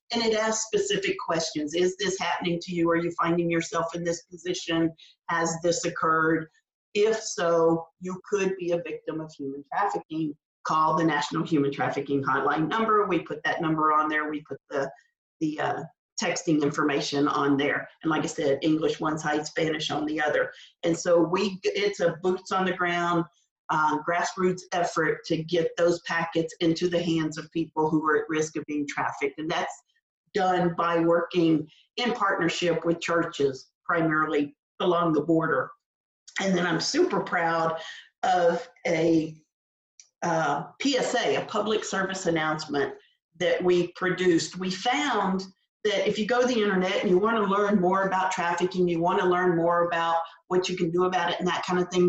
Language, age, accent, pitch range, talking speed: English, 40-59, American, 160-195 Hz, 175 wpm